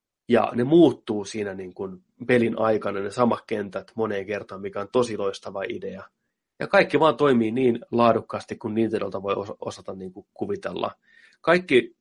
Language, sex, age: Finnish, male, 30-49